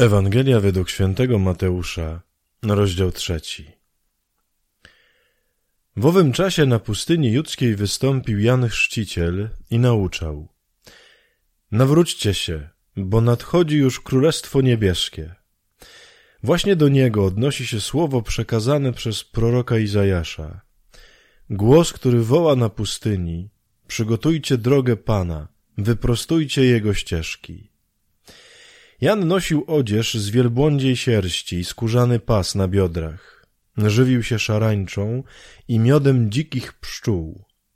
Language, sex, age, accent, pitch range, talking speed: Polish, male, 20-39, native, 100-130 Hz, 100 wpm